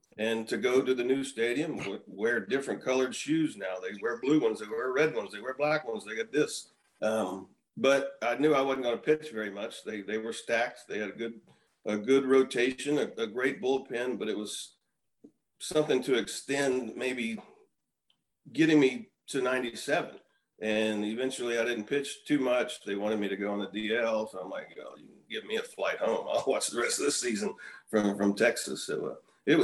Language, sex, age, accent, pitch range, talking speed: English, male, 40-59, American, 105-135 Hz, 210 wpm